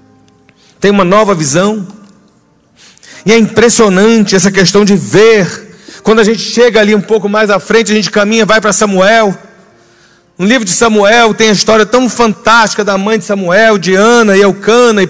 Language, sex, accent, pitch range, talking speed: Portuguese, male, Brazilian, 210-255 Hz, 180 wpm